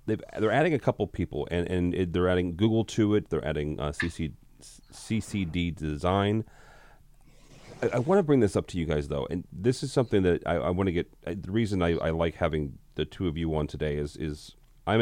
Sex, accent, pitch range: male, American, 75-90 Hz